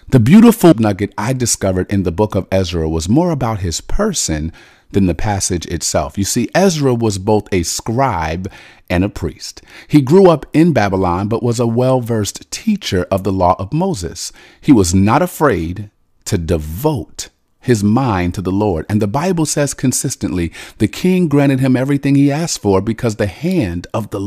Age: 40-59